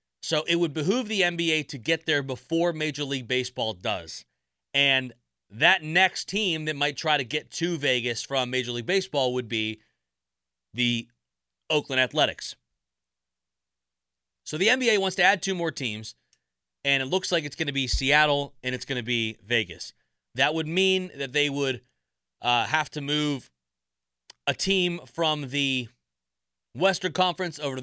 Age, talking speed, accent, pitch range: 30-49, 165 wpm, American, 110-165 Hz